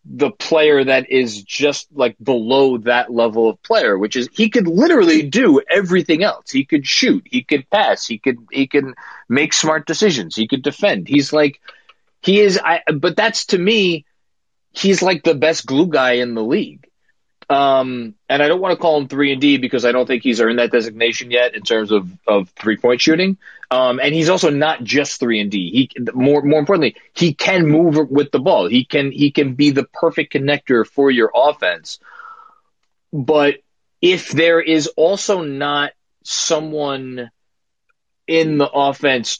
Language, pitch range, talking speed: English, 125-165 Hz, 185 wpm